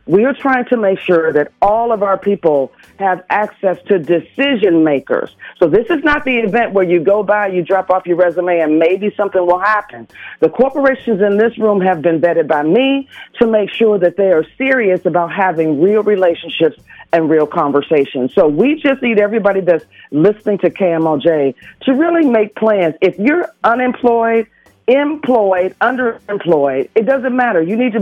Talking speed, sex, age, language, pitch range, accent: 180 wpm, female, 40-59, English, 175-240 Hz, American